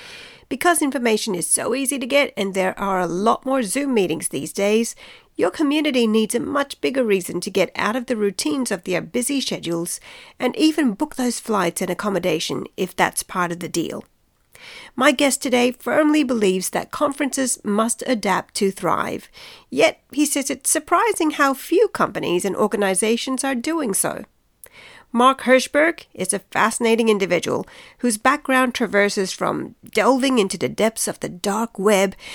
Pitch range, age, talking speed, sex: 195-280 Hz, 40-59, 165 wpm, female